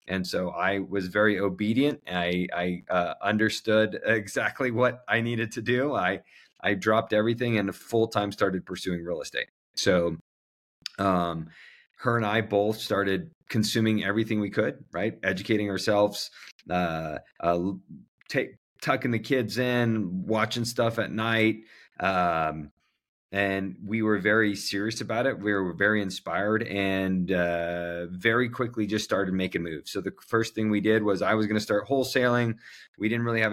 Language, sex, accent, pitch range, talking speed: English, male, American, 95-110 Hz, 160 wpm